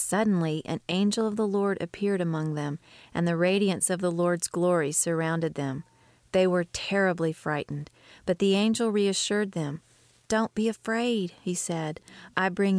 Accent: American